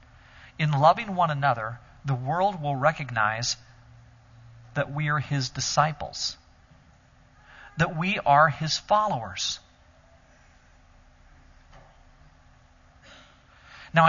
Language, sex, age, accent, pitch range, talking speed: English, male, 40-59, American, 135-215 Hz, 80 wpm